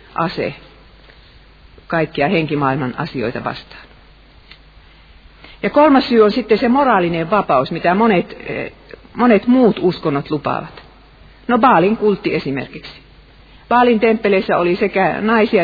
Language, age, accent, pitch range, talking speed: Finnish, 50-69, native, 150-215 Hz, 105 wpm